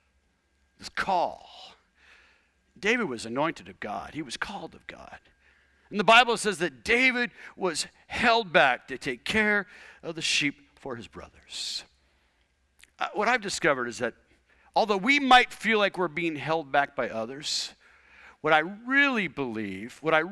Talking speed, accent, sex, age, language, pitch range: 155 wpm, American, male, 50-69, English, 140-235 Hz